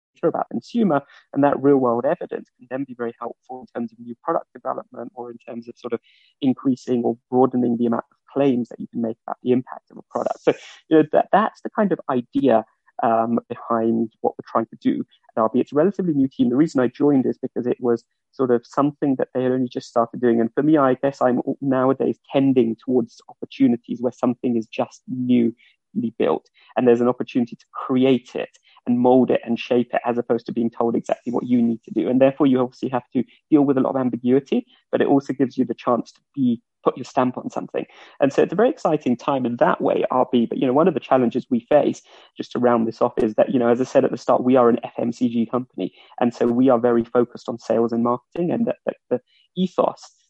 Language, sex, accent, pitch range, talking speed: English, male, British, 120-135 Hz, 245 wpm